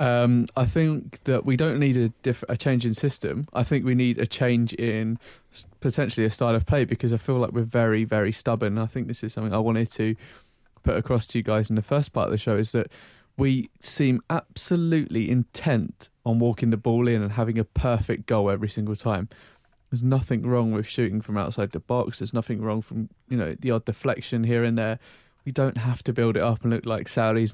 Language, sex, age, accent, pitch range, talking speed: English, male, 20-39, British, 110-125 Hz, 230 wpm